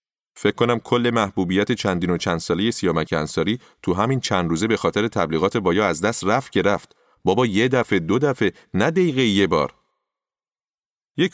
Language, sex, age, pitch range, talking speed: Persian, male, 30-49, 100-130 Hz, 175 wpm